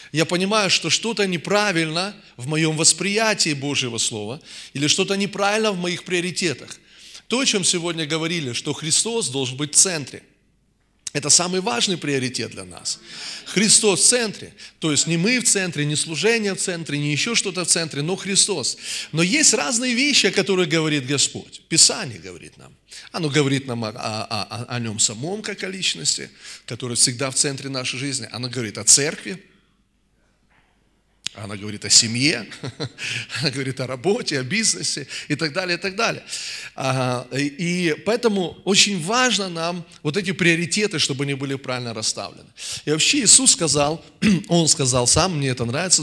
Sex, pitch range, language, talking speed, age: male, 135-190 Hz, Russian, 165 wpm, 20-39